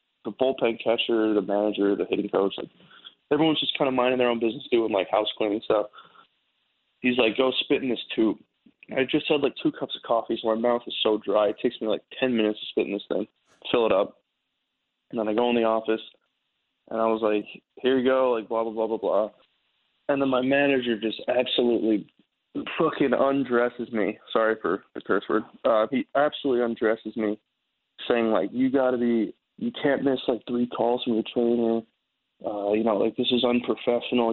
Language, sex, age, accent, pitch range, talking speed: English, male, 20-39, American, 110-130 Hz, 205 wpm